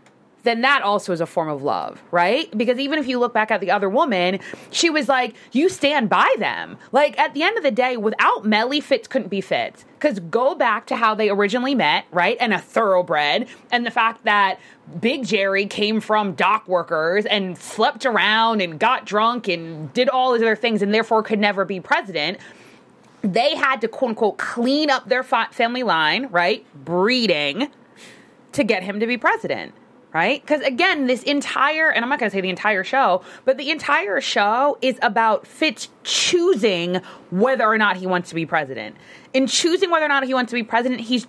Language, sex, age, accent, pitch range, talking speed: English, female, 20-39, American, 195-265 Hz, 200 wpm